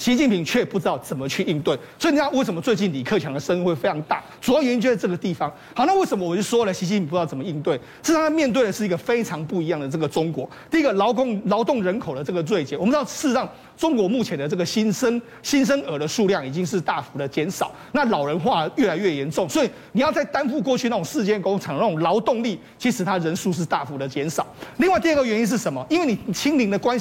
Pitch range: 185-260 Hz